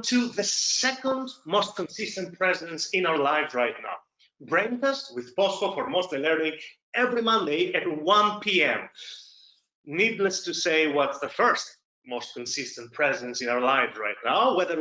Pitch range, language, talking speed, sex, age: 180-260 Hz, English, 155 wpm, male, 30-49